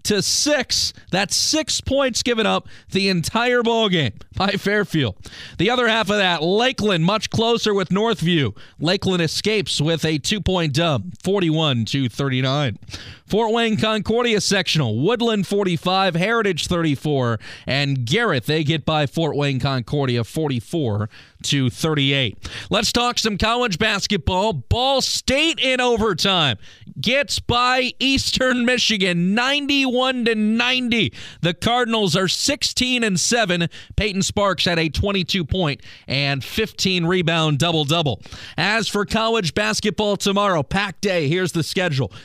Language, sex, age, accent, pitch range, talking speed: English, male, 30-49, American, 155-220 Hz, 125 wpm